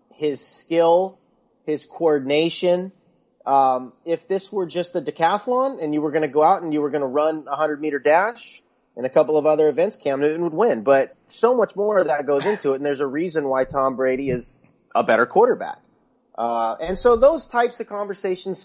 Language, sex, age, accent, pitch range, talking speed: English, male, 30-49, American, 135-175 Hz, 205 wpm